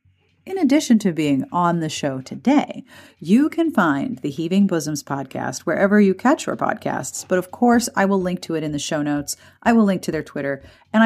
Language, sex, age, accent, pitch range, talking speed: English, female, 40-59, American, 155-240 Hz, 210 wpm